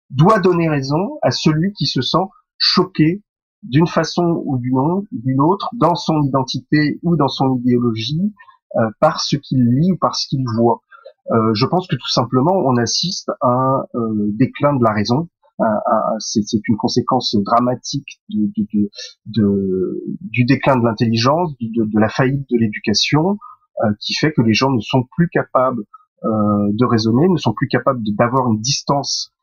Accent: French